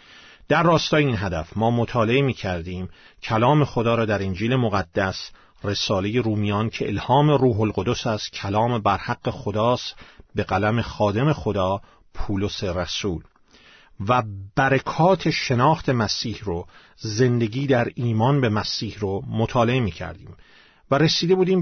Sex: male